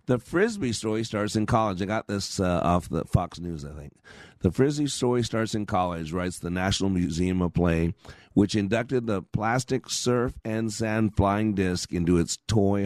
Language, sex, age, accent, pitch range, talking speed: English, male, 50-69, American, 95-125 Hz, 185 wpm